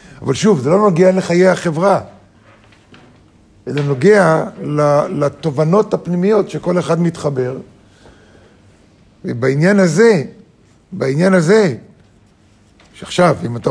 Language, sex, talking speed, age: Hebrew, male, 90 wpm, 50-69